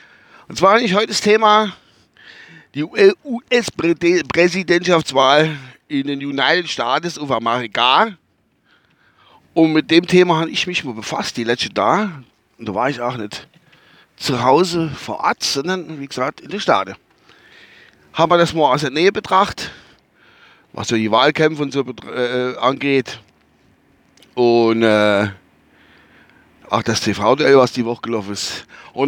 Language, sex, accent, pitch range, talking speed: German, male, German, 120-185 Hz, 140 wpm